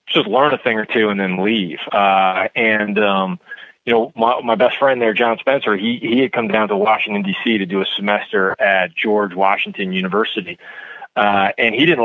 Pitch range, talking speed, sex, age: 95-115 Hz, 205 wpm, male, 30-49